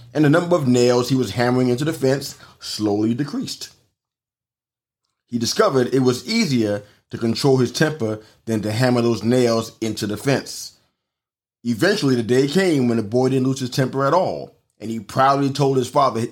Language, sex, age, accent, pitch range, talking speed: English, male, 30-49, American, 110-130 Hz, 180 wpm